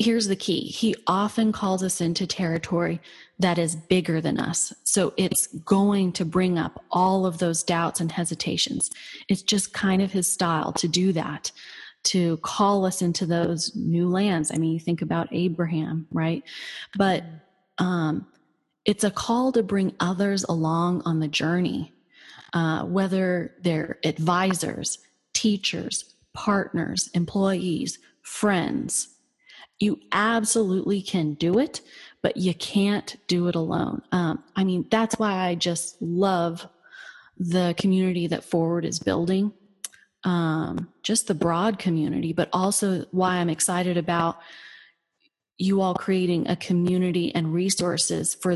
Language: English